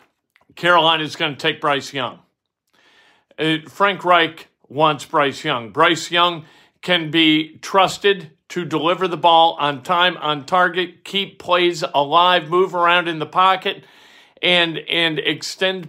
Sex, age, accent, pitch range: male, 50-69, American, 150-185 Hz